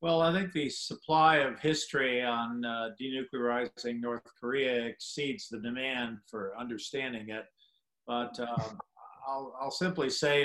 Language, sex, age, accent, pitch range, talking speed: English, male, 50-69, American, 120-135 Hz, 140 wpm